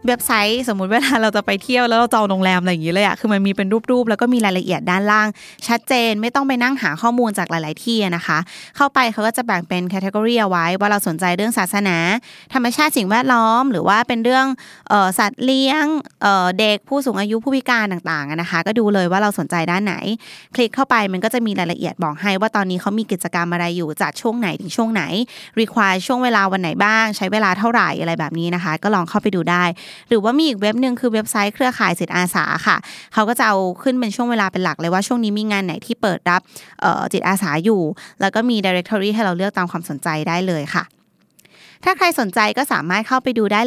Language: Thai